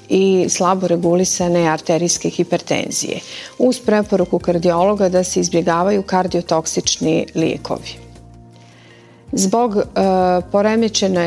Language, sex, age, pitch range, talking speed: Croatian, female, 40-59, 170-195 Hz, 85 wpm